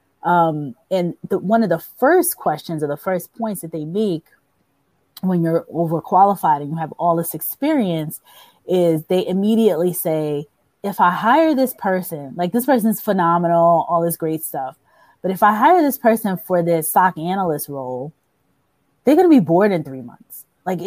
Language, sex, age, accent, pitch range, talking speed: English, female, 20-39, American, 170-215 Hz, 180 wpm